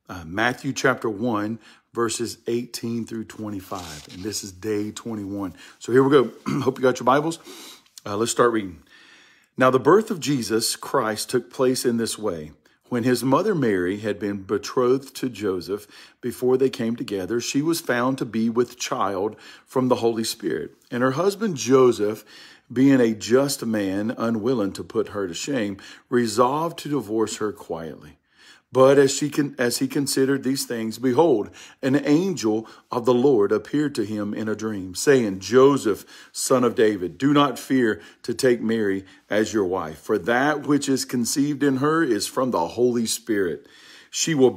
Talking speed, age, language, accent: 170 wpm, 50-69, English, American